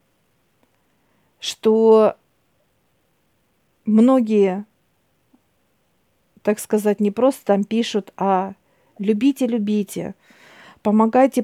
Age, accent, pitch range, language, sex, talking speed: 50-69, native, 195-230 Hz, Russian, female, 65 wpm